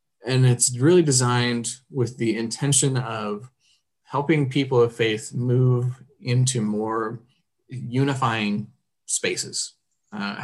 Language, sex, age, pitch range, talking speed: English, male, 20-39, 110-130 Hz, 105 wpm